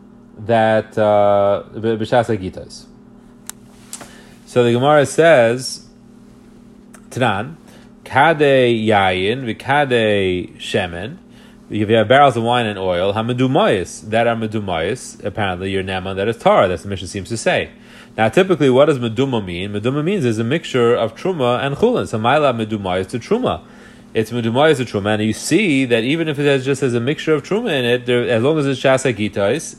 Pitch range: 105-130 Hz